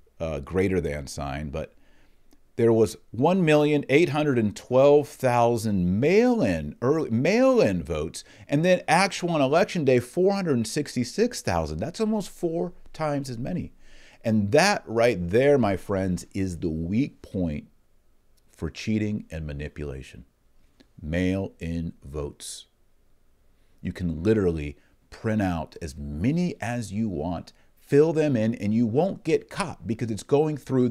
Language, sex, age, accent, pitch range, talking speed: English, male, 40-59, American, 85-135 Hz, 120 wpm